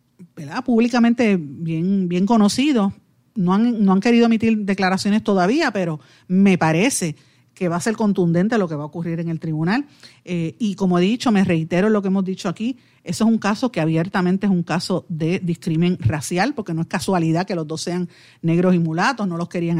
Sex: female